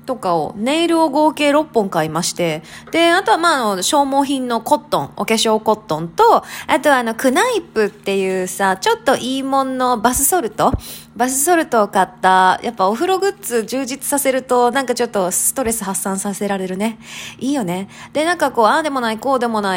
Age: 20-39